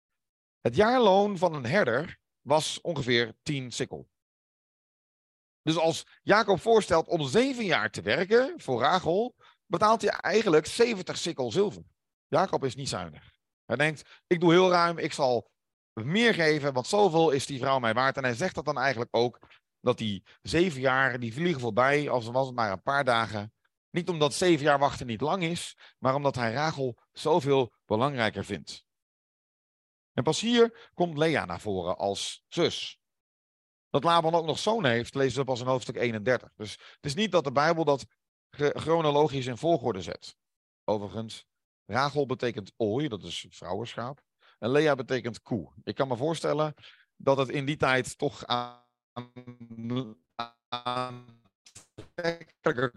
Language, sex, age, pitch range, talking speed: Dutch, male, 40-59, 120-165 Hz, 155 wpm